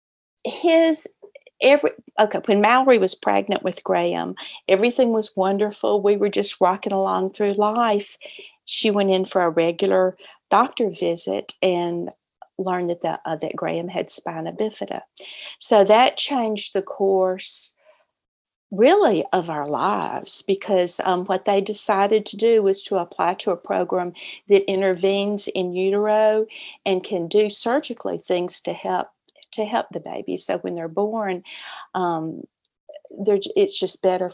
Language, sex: English, female